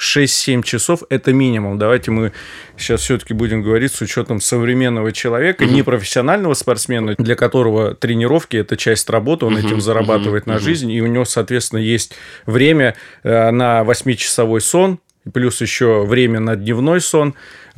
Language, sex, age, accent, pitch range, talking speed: Russian, male, 20-39, native, 110-130 Hz, 140 wpm